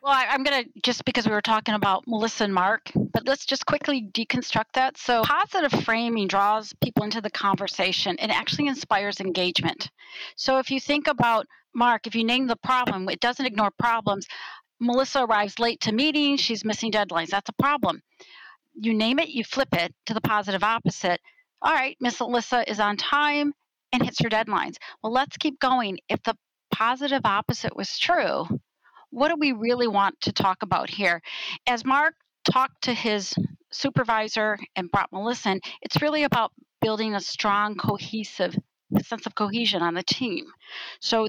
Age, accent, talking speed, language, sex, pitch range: 40-59, American, 180 wpm, English, female, 200-255 Hz